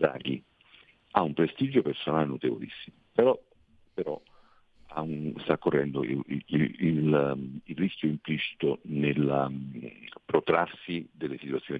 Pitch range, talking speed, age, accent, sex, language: 70-80 Hz, 90 wpm, 50-69, native, male, Italian